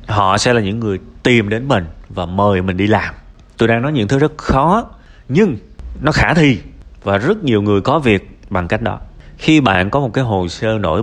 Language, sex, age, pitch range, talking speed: Vietnamese, male, 30-49, 95-130 Hz, 225 wpm